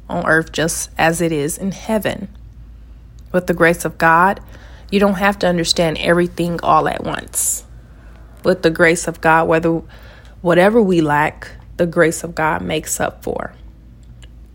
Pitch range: 155-175 Hz